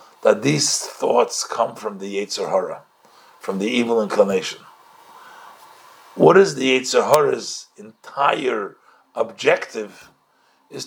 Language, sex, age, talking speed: English, male, 60-79, 110 wpm